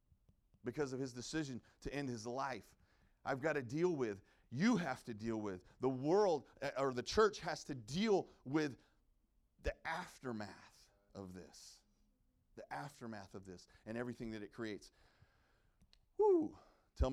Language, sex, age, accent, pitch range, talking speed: English, male, 40-59, American, 100-135 Hz, 145 wpm